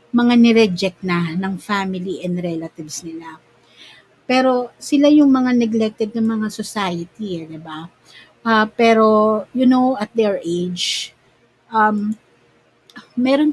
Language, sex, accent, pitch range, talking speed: Filipino, female, native, 175-215 Hz, 125 wpm